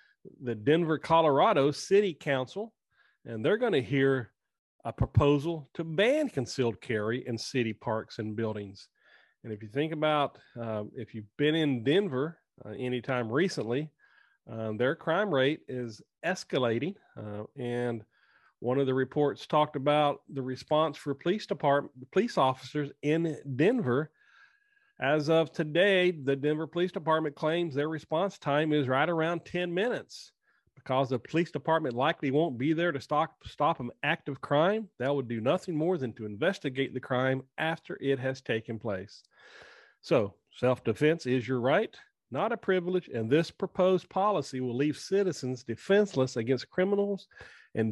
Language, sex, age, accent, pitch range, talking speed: English, male, 40-59, American, 125-165 Hz, 155 wpm